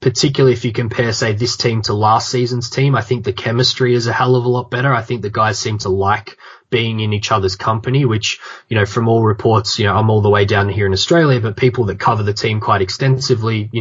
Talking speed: 255 wpm